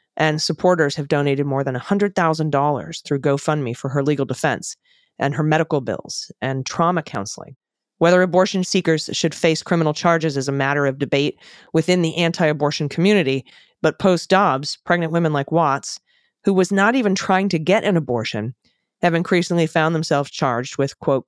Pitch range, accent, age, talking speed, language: 140-170 Hz, American, 30-49, 165 wpm, English